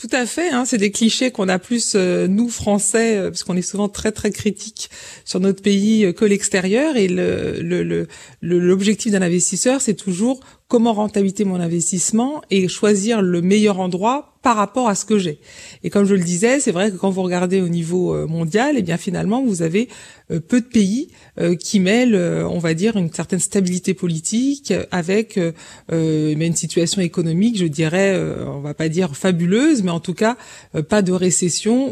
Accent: French